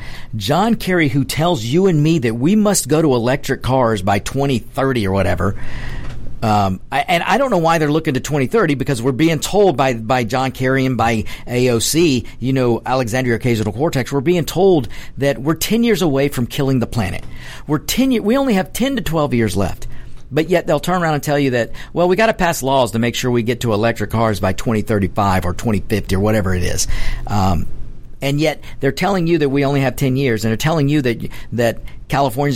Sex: male